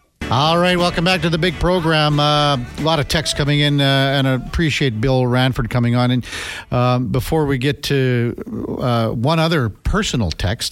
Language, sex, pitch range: English, male, 115-140 Hz